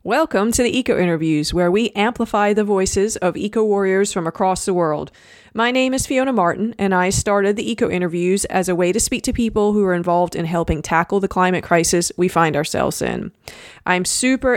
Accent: American